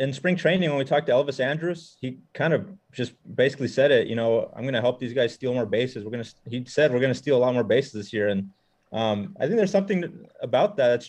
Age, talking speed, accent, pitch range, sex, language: 30-49, 275 wpm, American, 115-140 Hz, male, English